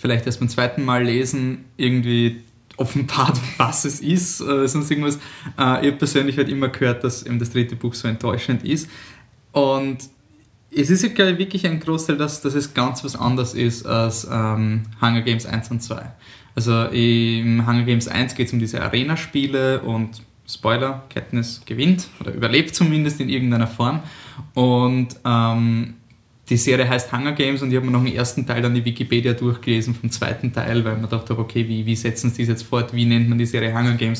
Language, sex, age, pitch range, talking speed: German, male, 20-39, 115-135 Hz, 195 wpm